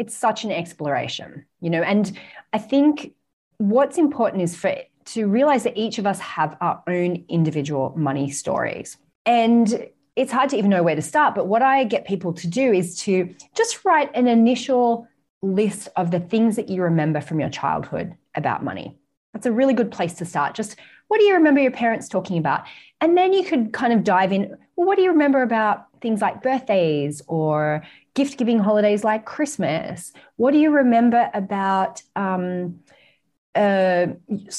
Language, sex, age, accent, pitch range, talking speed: English, female, 30-49, Australian, 180-260 Hz, 180 wpm